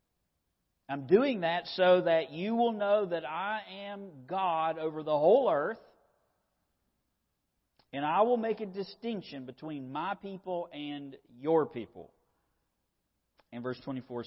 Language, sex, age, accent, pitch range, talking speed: English, male, 50-69, American, 120-165 Hz, 130 wpm